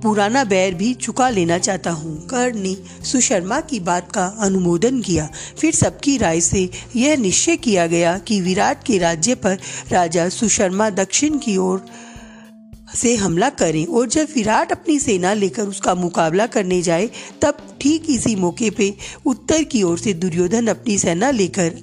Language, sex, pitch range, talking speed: Hindi, female, 175-235 Hz, 160 wpm